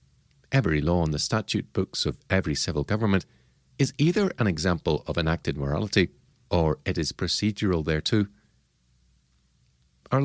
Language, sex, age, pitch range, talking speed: English, male, 50-69, 75-105 Hz, 135 wpm